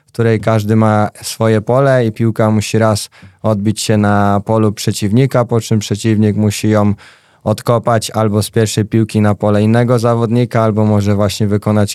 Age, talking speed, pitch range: 20-39, 165 wpm, 110-115 Hz